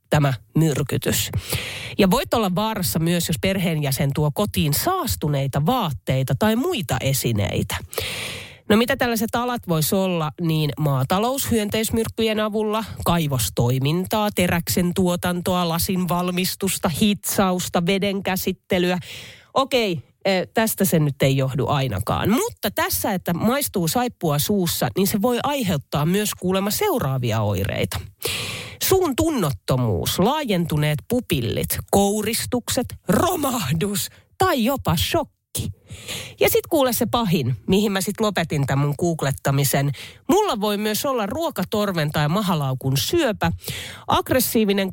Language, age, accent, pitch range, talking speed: Finnish, 30-49, native, 140-215 Hz, 110 wpm